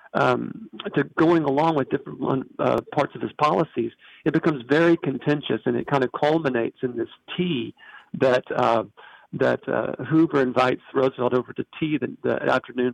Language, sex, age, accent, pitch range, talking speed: English, male, 50-69, American, 125-160 Hz, 165 wpm